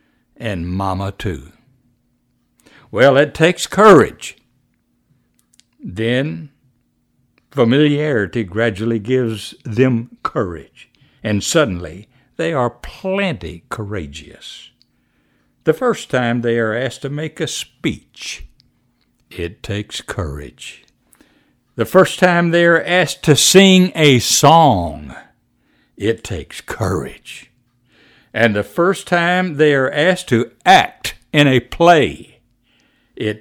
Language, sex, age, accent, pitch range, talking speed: English, male, 60-79, American, 105-165 Hz, 105 wpm